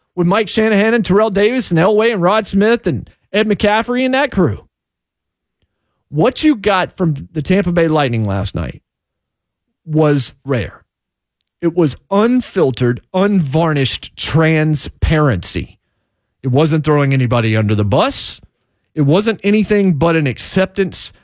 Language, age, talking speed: English, 40-59, 135 wpm